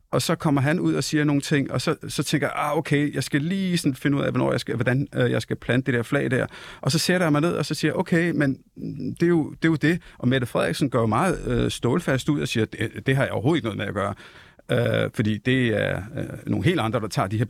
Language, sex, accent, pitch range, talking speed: Danish, male, native, 115-155 Hz, 250 wpm